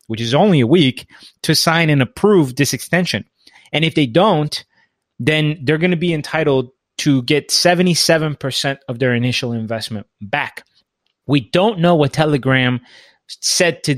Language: English